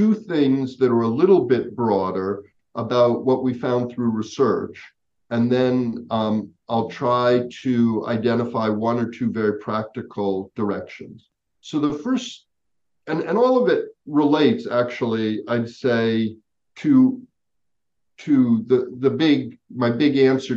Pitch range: 115-140 Hz